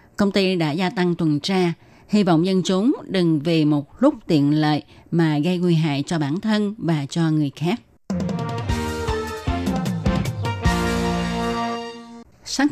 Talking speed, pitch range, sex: 135 wpm, 155-195 Hz, female